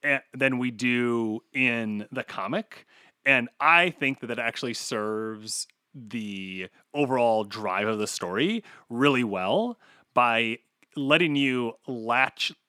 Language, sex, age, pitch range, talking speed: English, male, 30-49, 120-155 Hz, 120 wpm